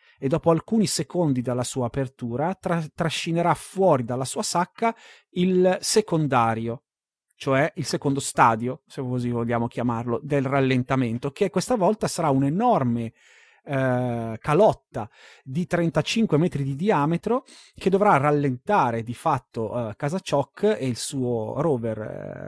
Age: 30-49